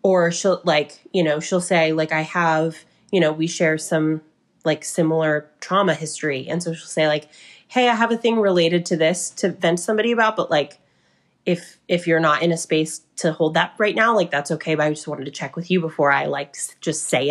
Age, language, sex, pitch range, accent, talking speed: 20-39, English, female, 155-180 Hz, American, 230 wpm